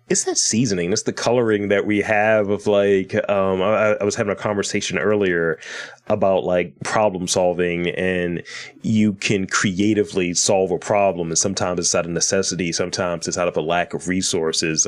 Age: 30-49